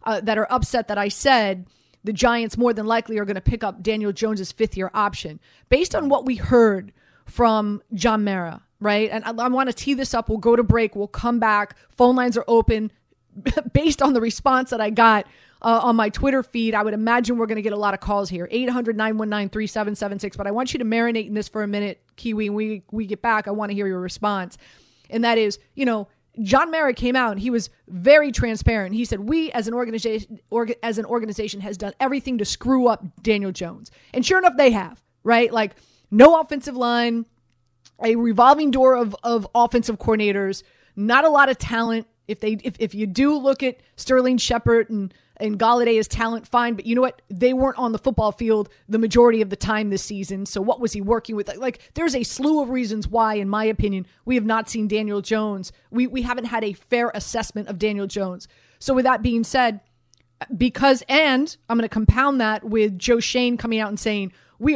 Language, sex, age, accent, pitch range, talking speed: English, female, 30-49, American, 210-245 Hz, 220 wpm